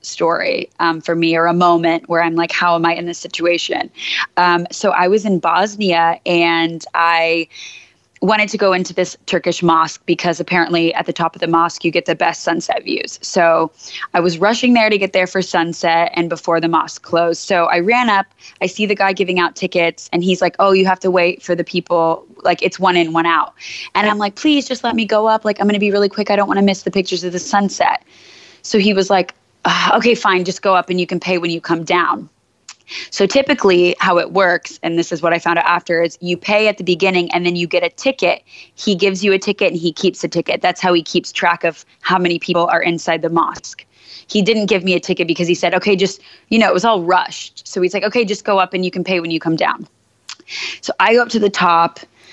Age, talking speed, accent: 20-39, 250 wpm, American